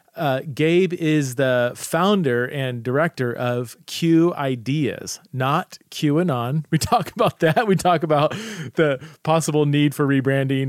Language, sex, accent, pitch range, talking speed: English, male, American, 125-155 Hz, 135 wpm